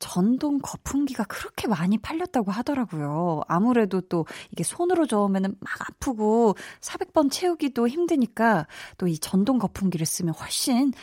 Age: 20-39